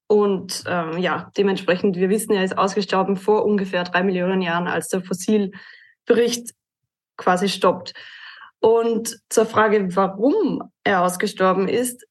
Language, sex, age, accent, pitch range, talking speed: German, female, 20-39, German, 195-230 Hz, 130 wpm